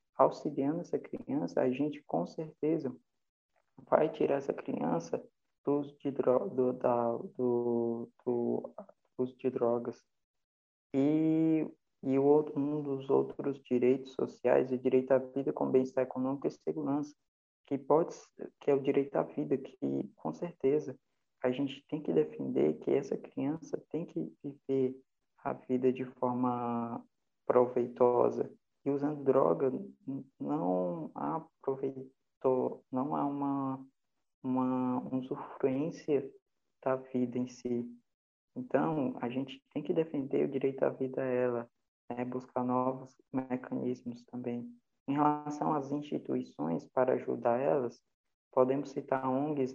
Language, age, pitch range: Portuguese, 20-39, 125-140 Hz